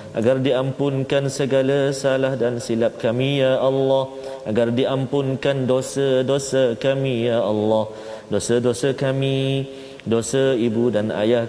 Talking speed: 110 wpm